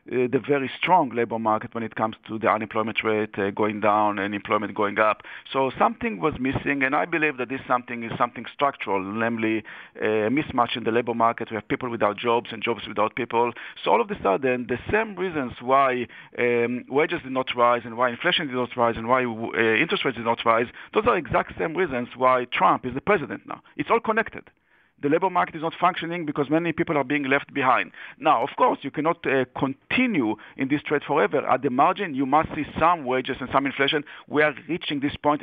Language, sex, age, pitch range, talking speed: English, male, 50-69, 120-145 Hz, 220 wpm